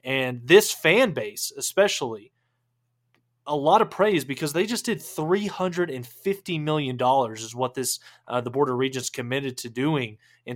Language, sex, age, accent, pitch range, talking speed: English, male, 20-39, American, 125-150 Hz, 160 wpm